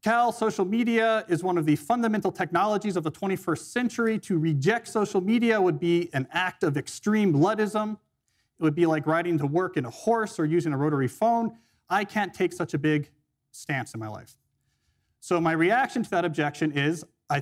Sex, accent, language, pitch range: male, American, English, 140-195 Hz